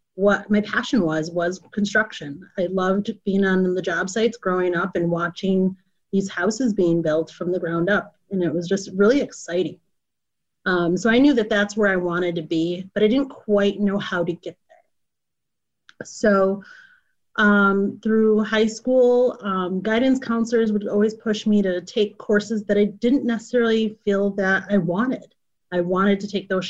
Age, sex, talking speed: 30-49, female, 180 wpm